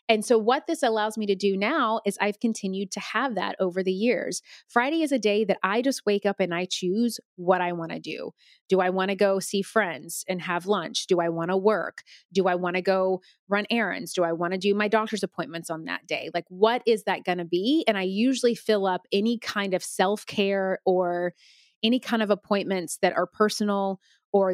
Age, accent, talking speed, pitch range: 30-49, American, 225 wpm, 185-225 Hz